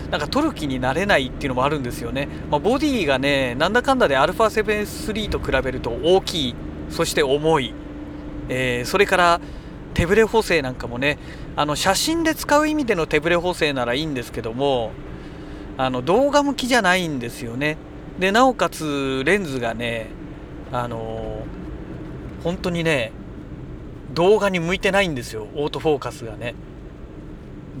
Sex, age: male, 40-59